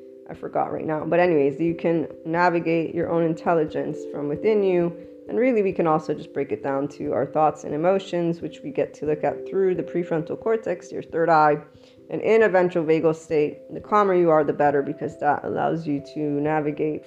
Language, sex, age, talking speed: English, female, 20-39, 210 wpm